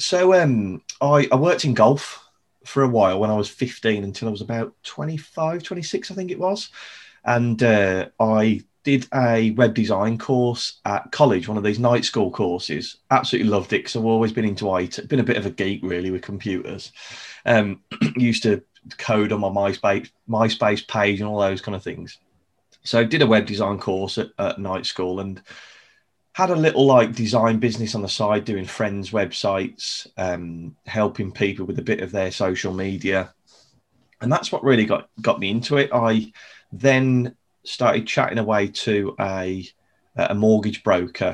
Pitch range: 95-120 Hz